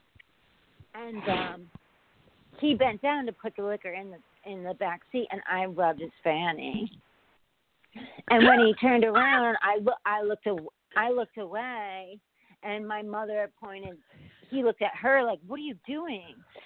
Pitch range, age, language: 190-245 Hz, 40-59, English